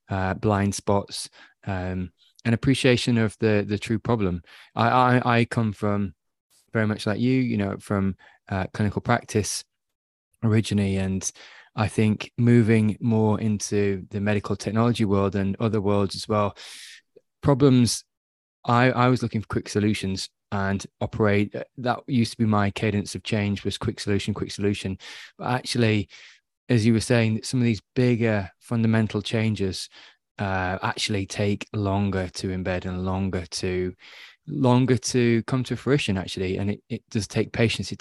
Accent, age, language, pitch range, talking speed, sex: British, 20-39, English, 100-120 Hz, 155 wpm, male